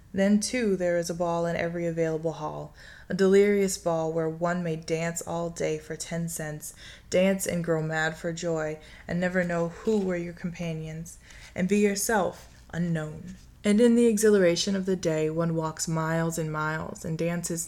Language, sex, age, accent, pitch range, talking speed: English, female, 20-39, American, 155-180 Hz, 180 wpm